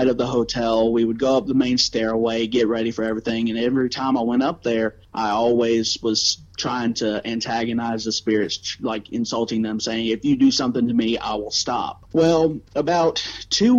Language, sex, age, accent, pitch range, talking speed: English, male, 30-49, American, 115-145 Hz, 195 wpm